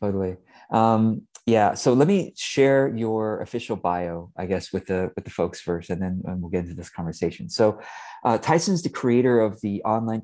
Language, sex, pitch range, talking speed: English, male, 95-110 Hz, 195 wpm